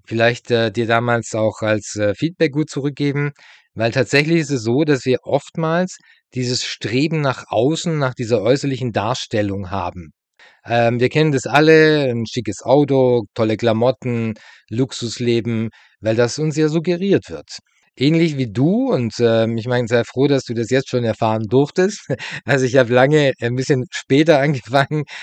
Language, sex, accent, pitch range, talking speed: German, male, German, 115-150 Hz, 160 wpm